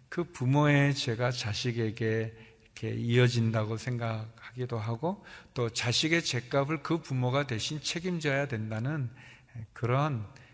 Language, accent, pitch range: Korean, native, 115-140 Hz